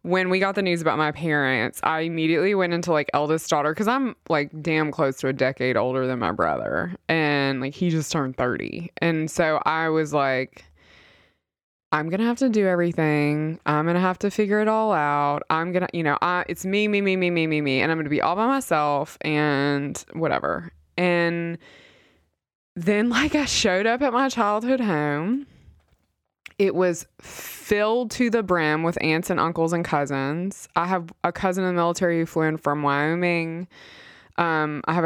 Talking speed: 195 wpm